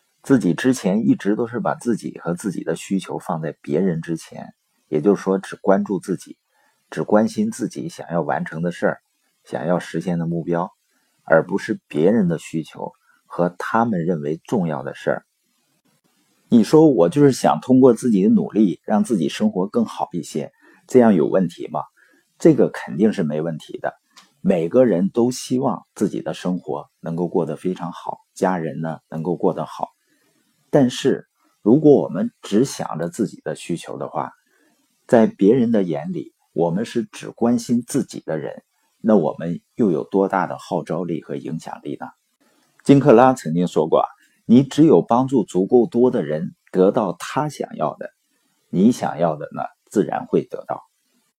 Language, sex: Chinese, male